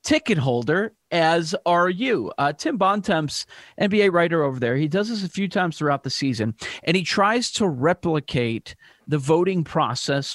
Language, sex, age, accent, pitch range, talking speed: English, male, 40-59, American, 150-200 Hz, 170 wpm